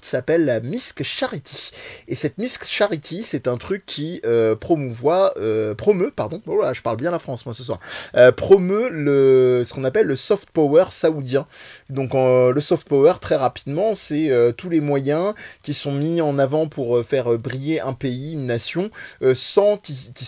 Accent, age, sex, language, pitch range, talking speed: French, 20-39, male, French, 125-170 Hz, 195 wpm